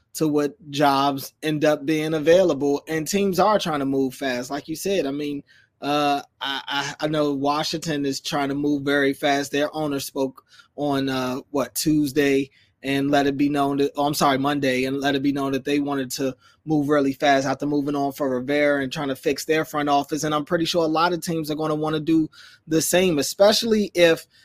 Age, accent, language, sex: 20-39, American, English, male